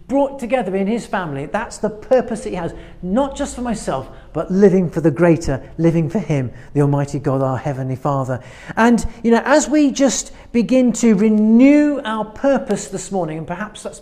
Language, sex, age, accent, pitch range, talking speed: English, male, 40-59, British, 180-235 Hz, 195 wpm